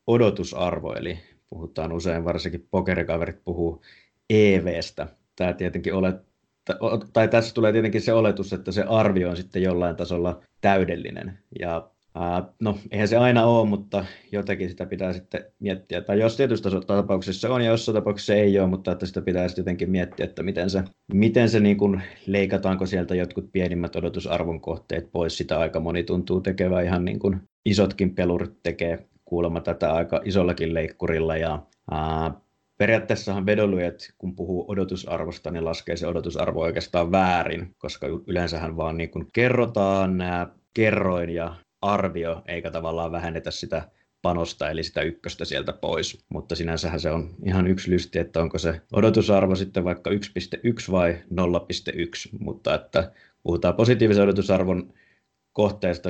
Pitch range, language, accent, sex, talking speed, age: 85-100 Hz, Finnish, native, male, 145 wpm, 20-39